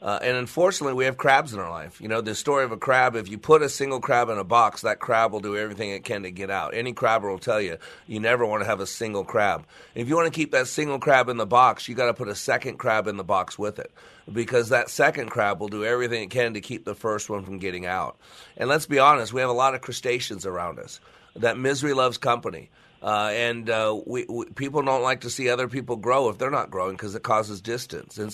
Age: 40-59